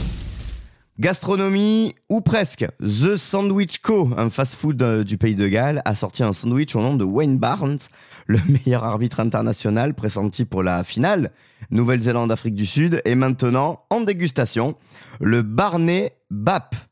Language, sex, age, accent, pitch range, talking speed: French, male, 30-49, French, 110-150 Hz, 140 wpm